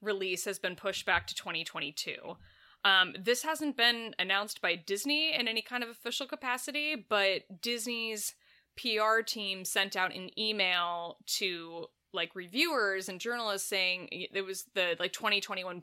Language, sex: English, female